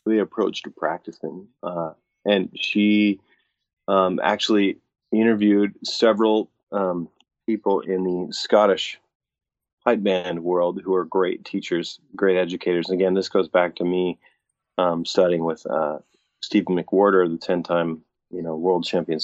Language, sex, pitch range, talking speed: English, male, 85-100 Hz, 135 wpm